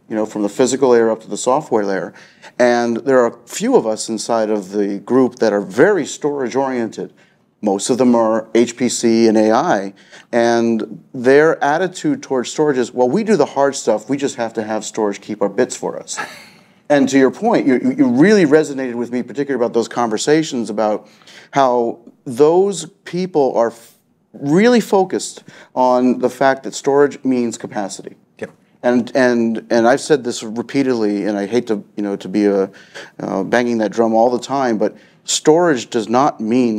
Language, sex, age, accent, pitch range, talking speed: English, male, 40-59, American, 110-135 Hz, 185 wpm